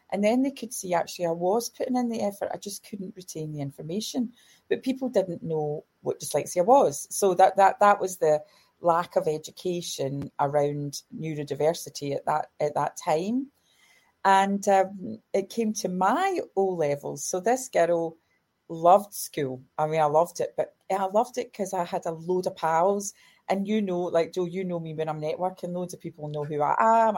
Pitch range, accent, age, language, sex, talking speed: 160-210 Hz, British, 30-49, English, female, 195 wpm